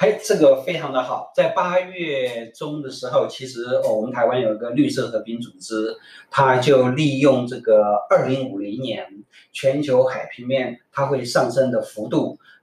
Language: Chinese